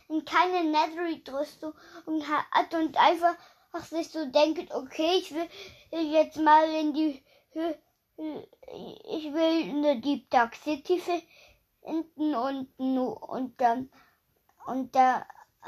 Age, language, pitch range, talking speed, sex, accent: 20-39, German, 275-335 Hz, 115 wpm, female, German